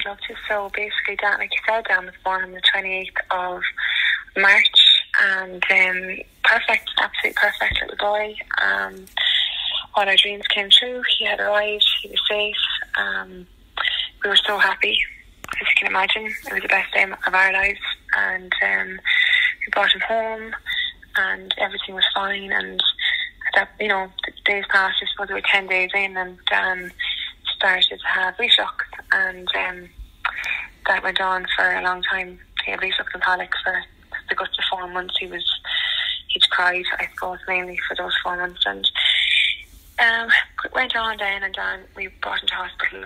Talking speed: 175 wpm